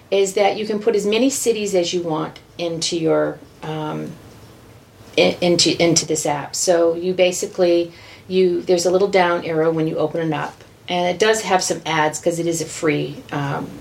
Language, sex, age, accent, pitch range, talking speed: English, female, 40-59, American, 165-195 Hz, 195 wpm